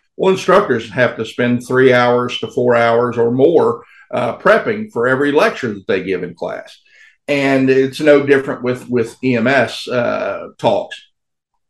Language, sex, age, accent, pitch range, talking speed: English, male, 50-69, American, 115-140 Hz, 160 wpm